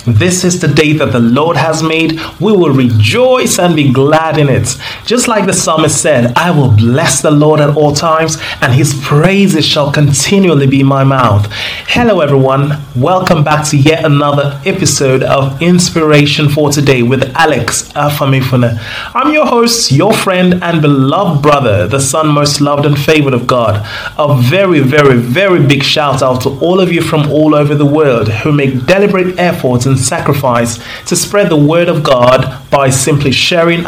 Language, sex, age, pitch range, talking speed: English, male, 30-49, 130-160 Hz, 180 wpm